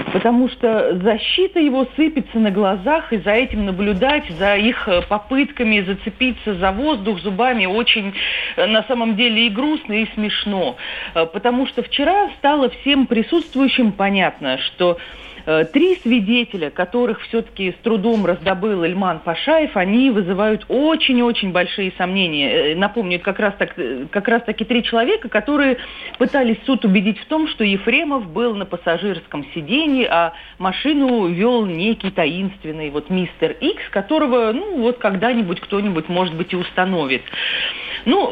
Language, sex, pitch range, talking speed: Russian, female, 190-255 Hz, 135 wpm